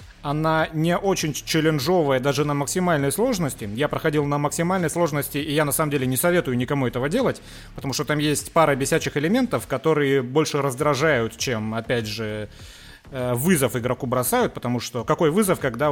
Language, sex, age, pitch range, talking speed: Russian, male, 30-49, 130-170 Hz, 165 wpm